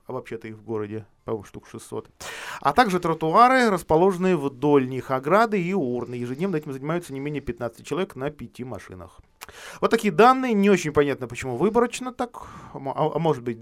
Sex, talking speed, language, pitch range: male, 170 wpm, Russian, 115-160 Hz